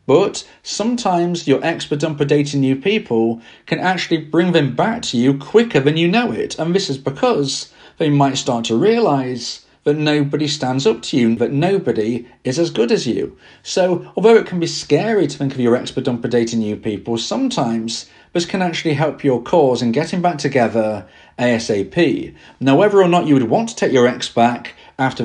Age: 40-59